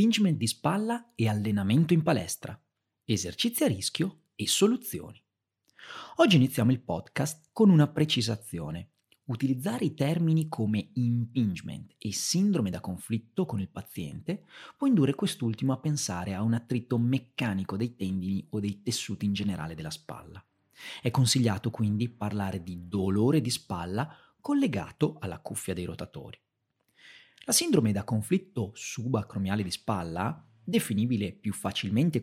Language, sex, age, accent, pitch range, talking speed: Italian, male, 40-59, native, 105-160 Hz, 135 wpm